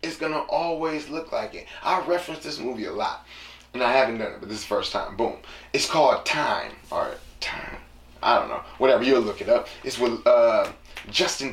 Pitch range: 110-155 Hz